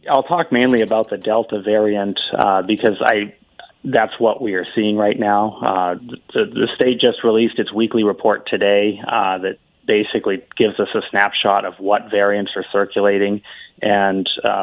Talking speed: 165 wpm